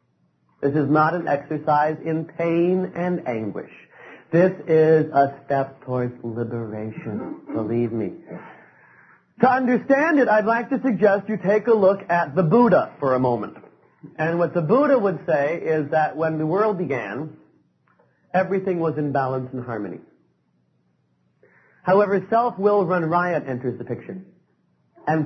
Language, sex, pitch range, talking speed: English, male, 135-180 Hz, 145 wpm